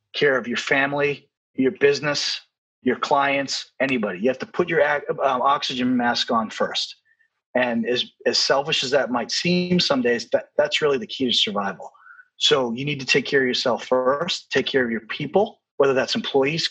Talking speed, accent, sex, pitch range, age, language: 190 wpm, American, male, 135-210 Hz, 30-49, English